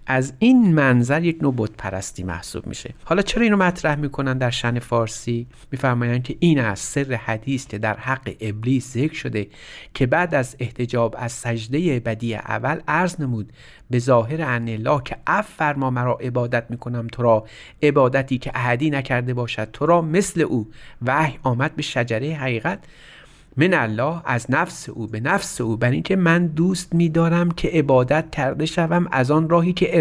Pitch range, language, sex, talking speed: 115-155 Hz, Persian, male, 165 wpm